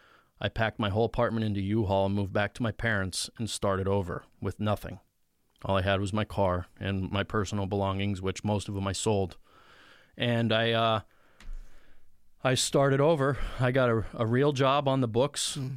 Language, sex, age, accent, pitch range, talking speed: English, male, 20-39, American, 100-120 Hz, 185 wpm